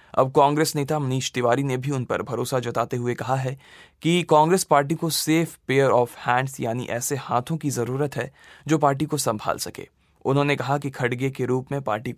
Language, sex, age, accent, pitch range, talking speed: Hindi, male, 20-39, native, 125-150 Hz, 200 wpm